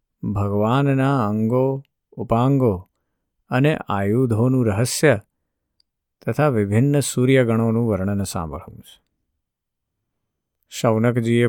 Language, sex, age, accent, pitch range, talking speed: Gujarati, male, 50-69, native, 105-135 Hz, 65 wpm